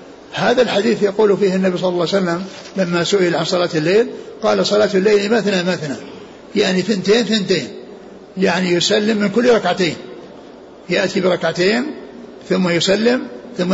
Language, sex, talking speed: Arabic, male, 140 wpm